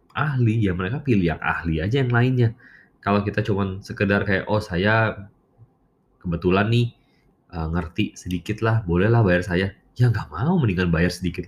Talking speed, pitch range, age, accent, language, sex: 165 wpm, 85-120 Hz, 20-39, native, Indonesian, male